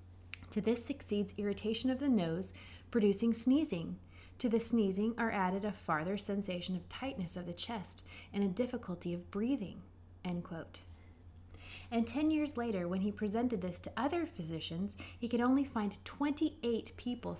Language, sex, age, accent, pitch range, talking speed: English, female, 30-49, American, 165-230 Hz, 160 wpm